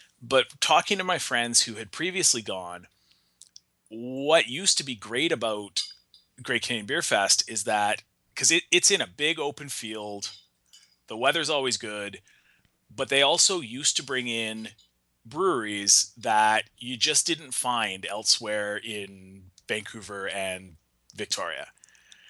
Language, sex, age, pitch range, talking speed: English, male, 30-49, 100-150 Hz, 135 wpm